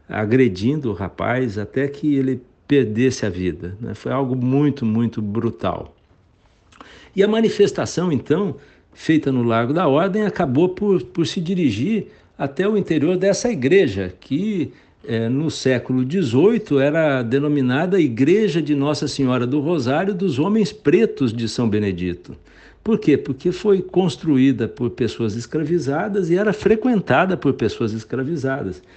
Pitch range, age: 120-180 Hz, 60-79